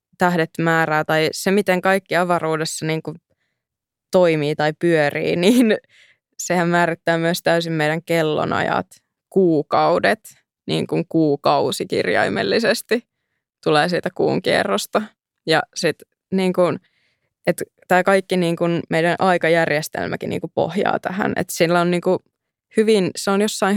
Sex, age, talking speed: female, 20-39, 110 wpm